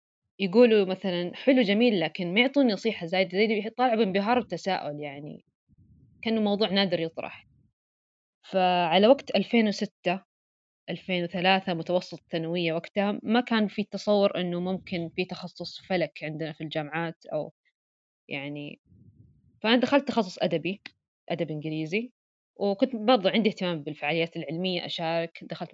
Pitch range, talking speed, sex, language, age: 160-205 Hz, 125 wpm, female, Arabic, 20-39